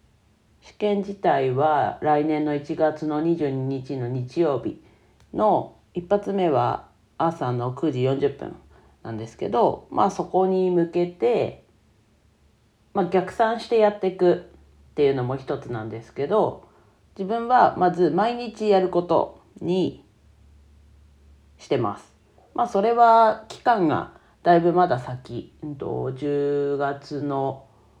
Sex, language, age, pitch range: female, Japanese, 40-59, 120-180 Hz